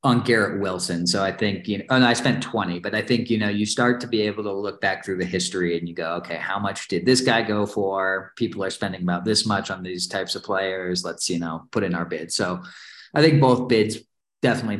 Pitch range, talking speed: 95-125 Hz, 255 wpm